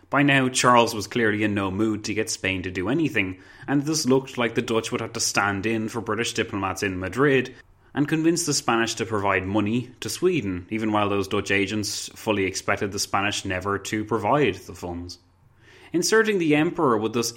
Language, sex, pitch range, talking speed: English, male, 100-130 Hz, 200 wpm